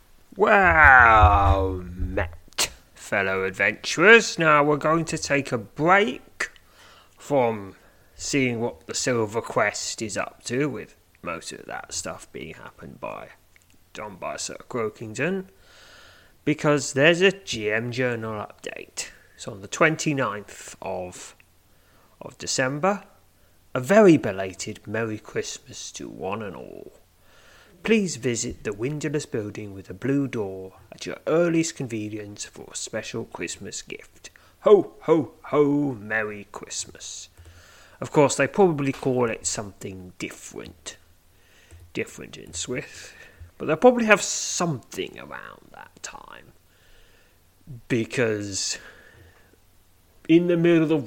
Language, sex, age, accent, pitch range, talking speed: English, male, 30-49, British, 95-155 Hz, 120 wpm